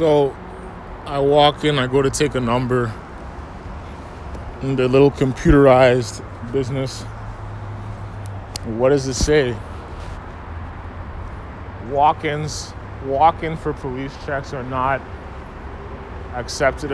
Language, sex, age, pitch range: English, male, 20-39, 85-125 Hz